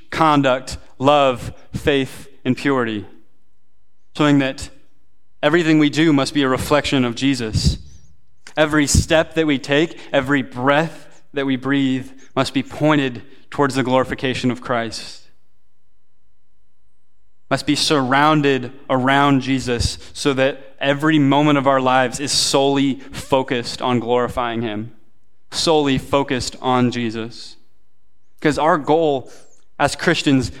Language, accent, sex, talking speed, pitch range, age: English, American, male, 120 wpm, 120-155 Hz, 20-39